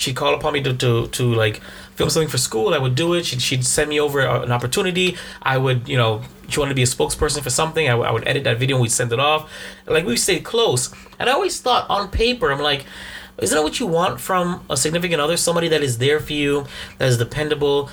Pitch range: 125-180 Hz